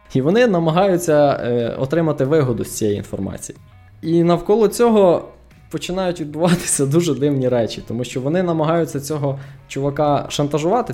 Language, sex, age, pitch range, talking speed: Ukrainian, male, 20-39, 120-155 Hz, 130 wpm